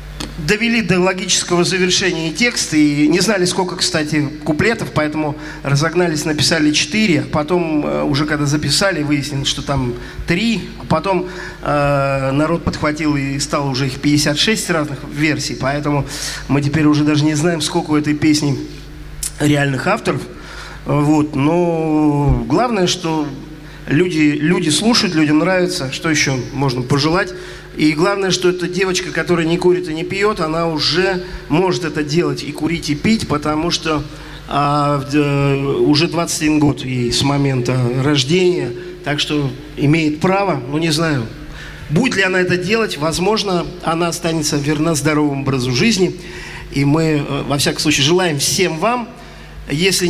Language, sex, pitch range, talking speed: Russian, male, 145-175 Hz, 145 wpm